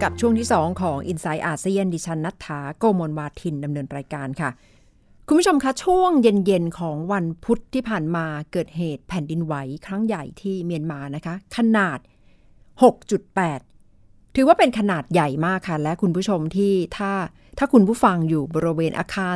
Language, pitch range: Thai, 155-220 Hz